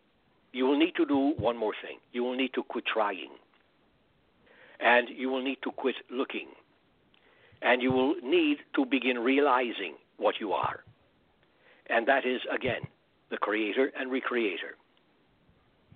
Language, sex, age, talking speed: English, male, 60-79, 145 wpm